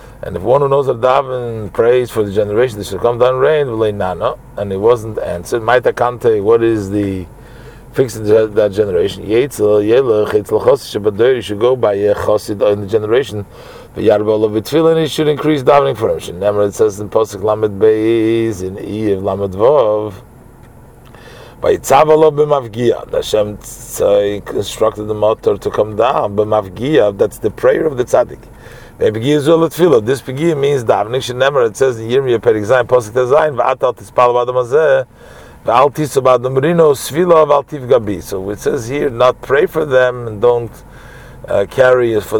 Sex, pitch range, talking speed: male, 110-150 Hz, 140 wpm